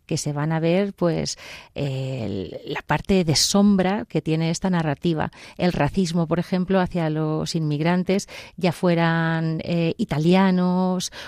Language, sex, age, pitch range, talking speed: Spanish, female, 30-49, 165-195 Hz, 140 wpm